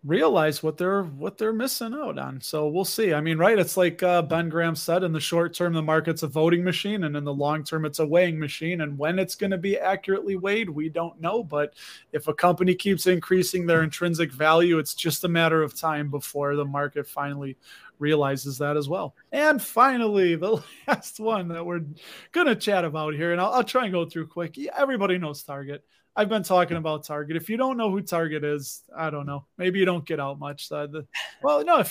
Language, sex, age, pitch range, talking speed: English, male, 20-39, 150-185 Hz, 220 wpm